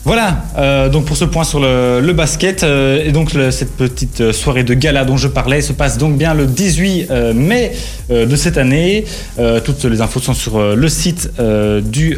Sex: male